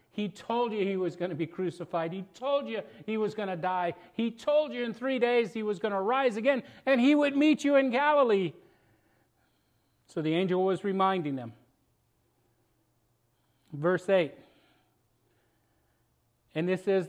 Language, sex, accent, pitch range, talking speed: English, male, American, 115-185 Hz, 165 wpm